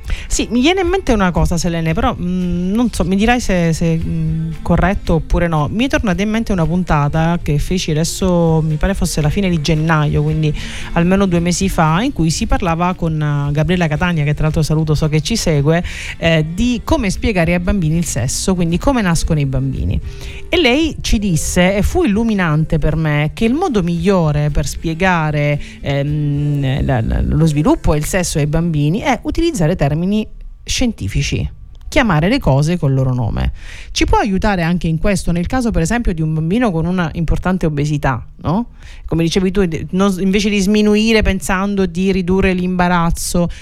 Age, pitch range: 30-49, 155-195 Hz